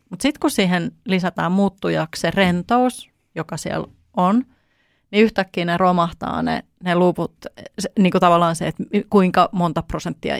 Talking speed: 145 wpm